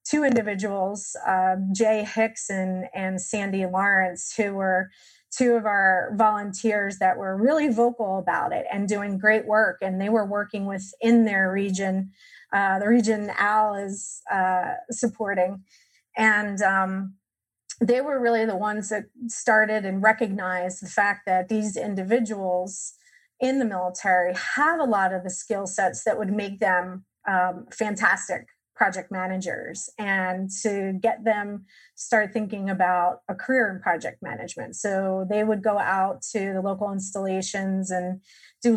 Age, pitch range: 30-49, 190-220 Hz